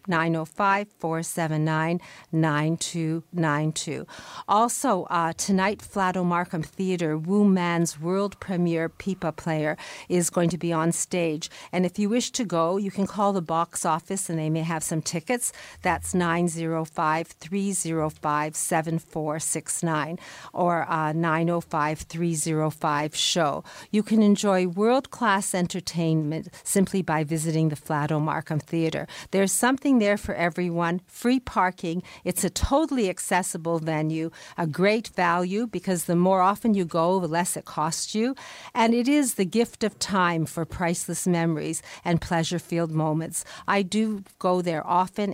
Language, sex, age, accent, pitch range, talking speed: English, female, 50-69, American, 160-195 Hz, 140 wpm